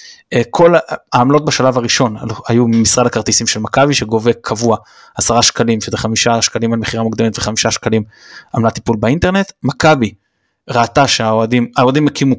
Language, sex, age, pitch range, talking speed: Hebrew, male, 20-39, 115-135 Hz, 135 wpm